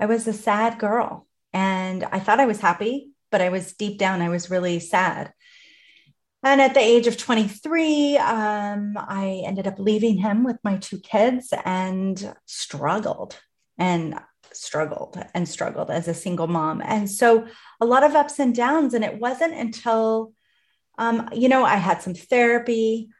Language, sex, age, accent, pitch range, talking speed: English, female, 30-49, American, 190-235 Hz, 170 wpm